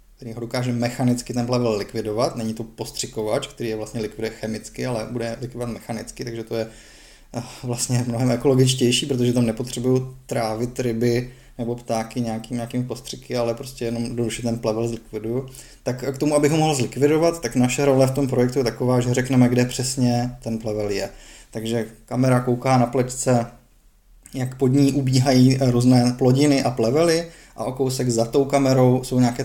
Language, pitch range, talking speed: Czech, 115-130 Hz, 175 wpm